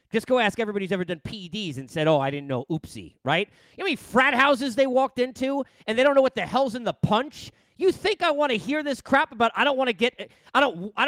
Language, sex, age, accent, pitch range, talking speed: English, male, 30-49, American, 210-300 Hz, 270 wpm